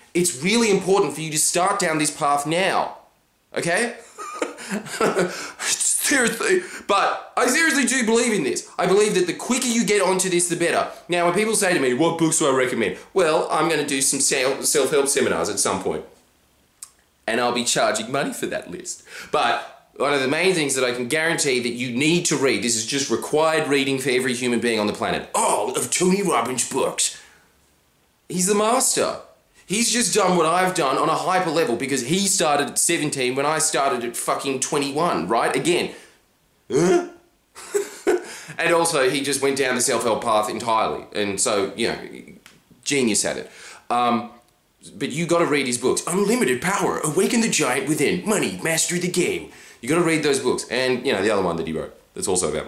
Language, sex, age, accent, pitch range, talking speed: English, male, 20-39, Australian, 135-200 Hz, 195 wpm